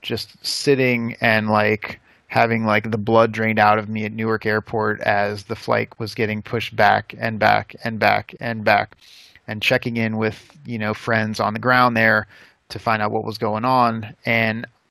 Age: 30-49